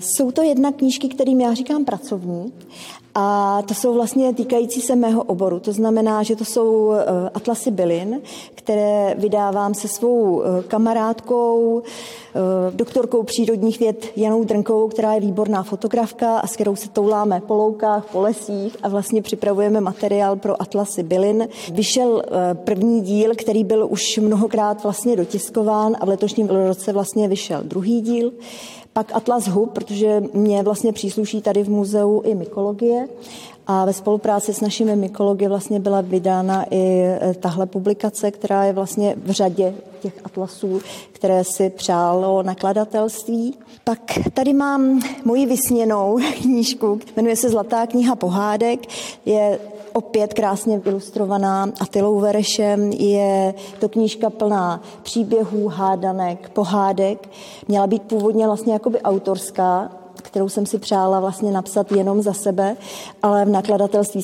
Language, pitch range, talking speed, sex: Czech, 195-225 Hz, 135 wpm, female